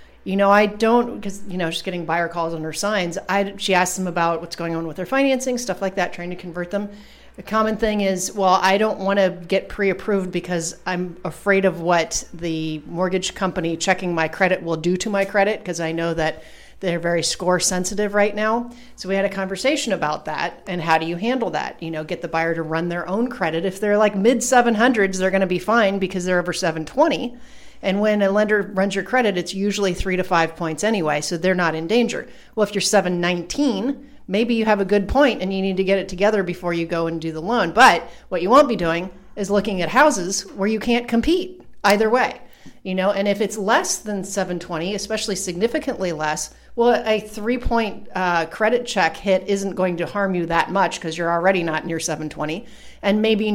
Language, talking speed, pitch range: English, 220 wpm, 170-210 Hz